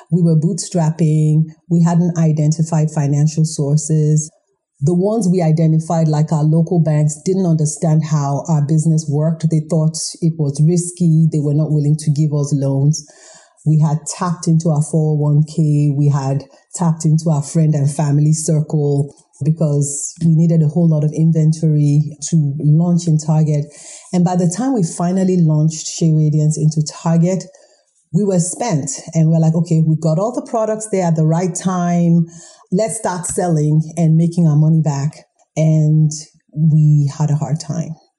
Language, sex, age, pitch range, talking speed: English, female, 40-59, 155-175 Hz, 165 wpm